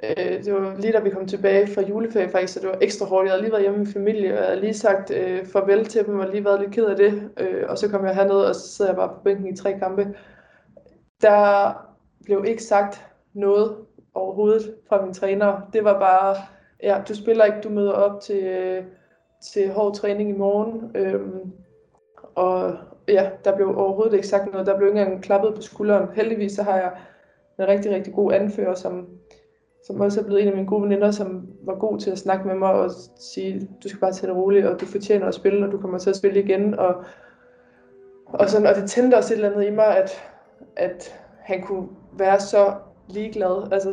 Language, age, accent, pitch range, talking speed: Danish, 20-39, native, 190-205 Hz, 225 wpm